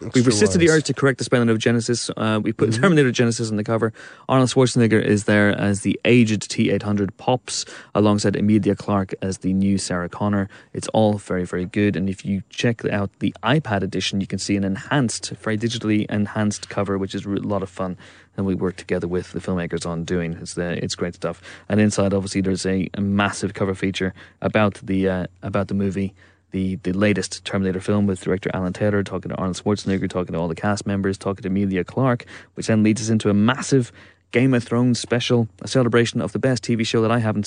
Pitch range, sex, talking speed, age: 95-110 Hz, male, 220 wpm, 20-39